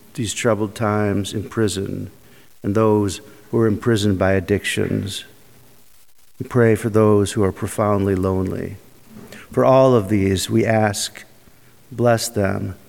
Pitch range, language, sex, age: 100-120 Hz, English, male, 50-69